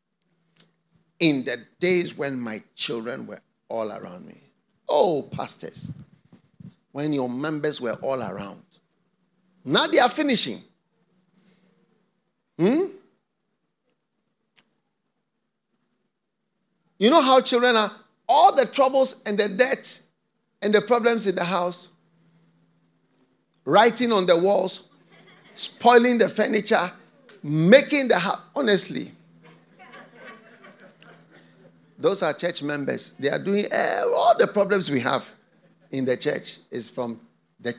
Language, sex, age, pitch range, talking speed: English, male, 50-69, 135-210 Hz, 110 wpm